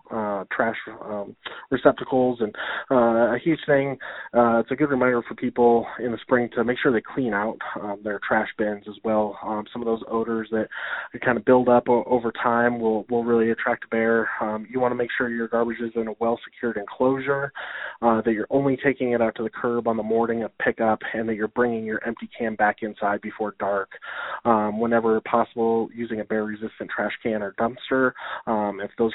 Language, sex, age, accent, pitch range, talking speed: English, male, 20-39, American, 110-120 Hz, 215 wpm